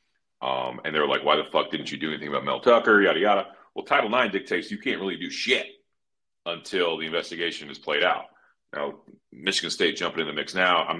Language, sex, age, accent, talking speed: English, male, 40-59, American, 225 wpm